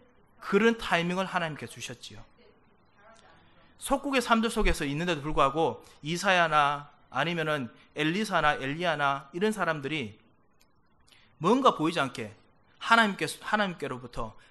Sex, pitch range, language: male, 120-185 Hz, Korean